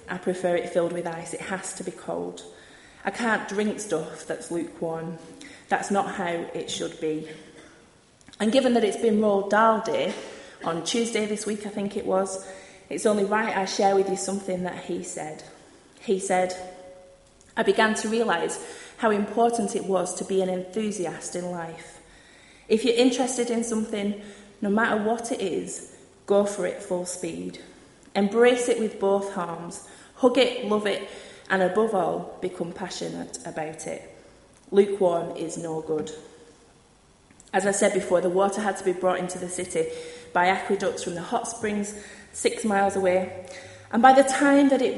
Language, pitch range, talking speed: English, 175-220 Hz, 170 wpm